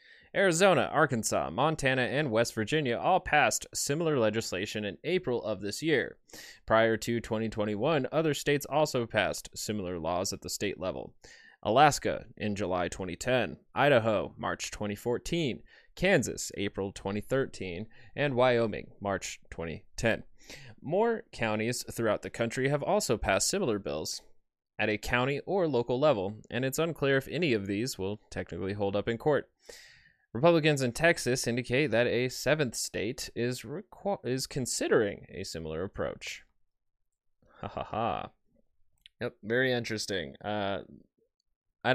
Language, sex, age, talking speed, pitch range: English, male, 20-39, 135 wpm, 105-145 Hz